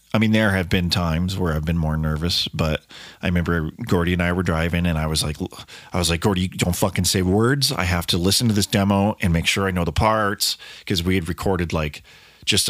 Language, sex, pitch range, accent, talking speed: English, male, 80-100 Hz, American, 240 wpm